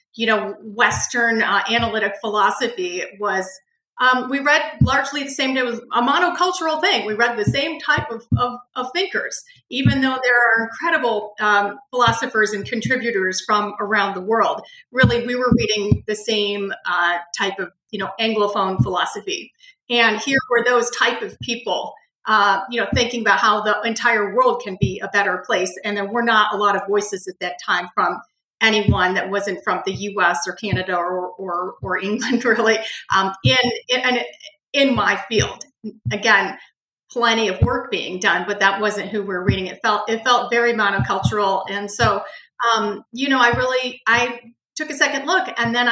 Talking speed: 180 wpm